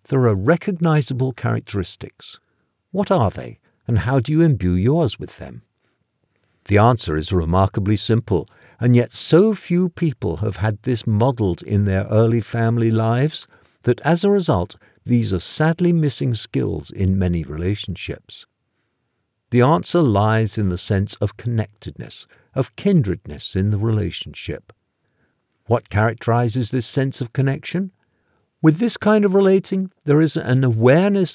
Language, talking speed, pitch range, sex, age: English, 140 wpm, 100-135 Hz, male, 50-69